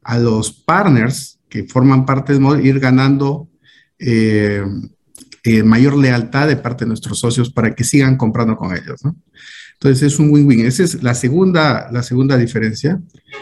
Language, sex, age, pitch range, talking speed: Spanish, male, 50-69, 120-145 Hz, 165 wpm